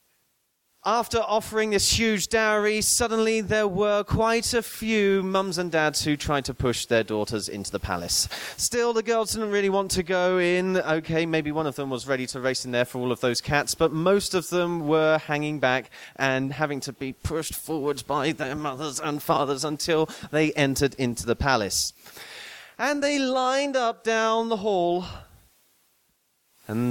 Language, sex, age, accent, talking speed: English, male, 30-49, British, 180 wpm